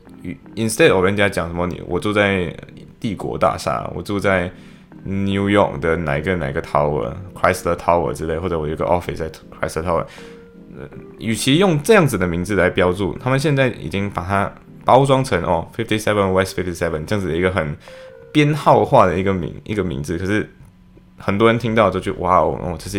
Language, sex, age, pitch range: Chinese, male, 10-29, 90-110 Hz